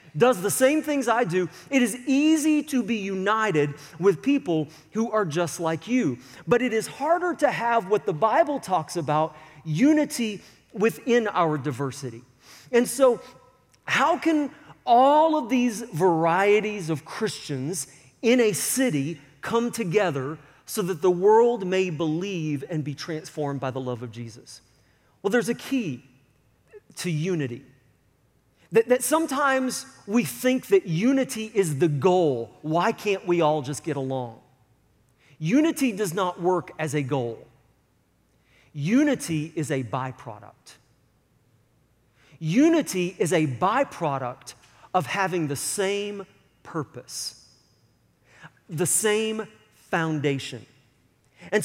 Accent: American